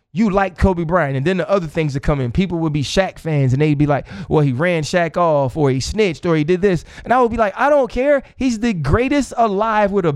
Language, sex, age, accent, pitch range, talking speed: English, male, 20-39, American, 150-205 Hz, 280 wpm